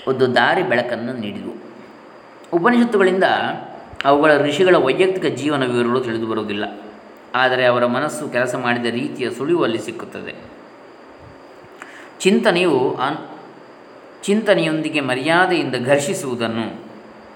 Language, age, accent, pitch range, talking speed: Kannada, 20-39, native, 120-150 Hz, 90 wpm